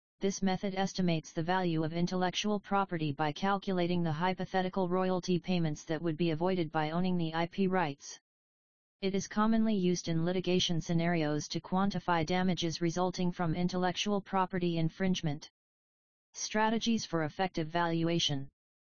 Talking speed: 135 wpm